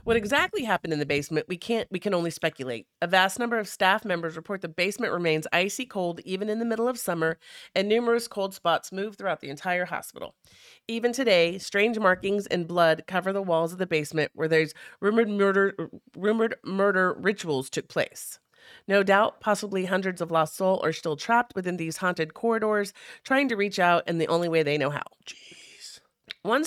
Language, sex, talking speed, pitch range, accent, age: English, female, 195 wpm, 160-205 Hz, American, 40-59